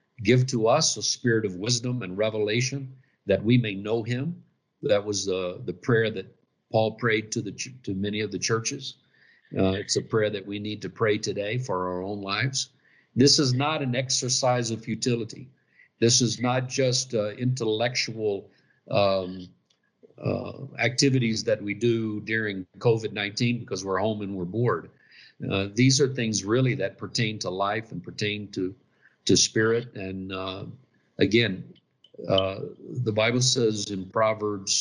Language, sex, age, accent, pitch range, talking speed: English, male, 50-69, American, 105-130 Hz, 160 wpm